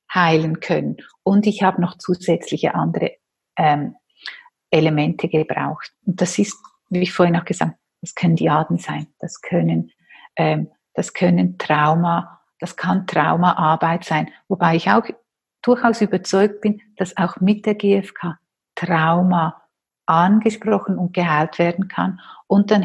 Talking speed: 140 wpm